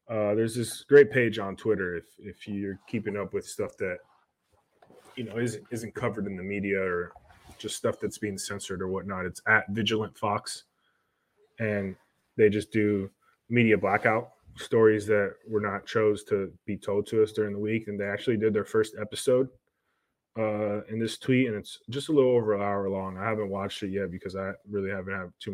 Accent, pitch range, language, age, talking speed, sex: American, 100-110 Hz, English, 20-39, 200 wpm, male